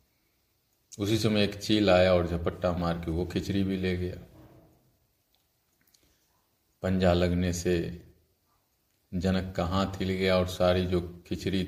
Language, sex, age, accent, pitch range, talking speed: Hindi, male, 50-69, native, 90-95 Hz, 125 wpm